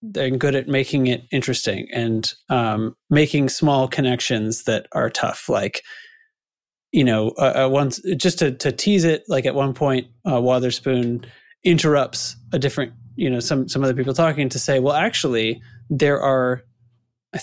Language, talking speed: English, 165 wpm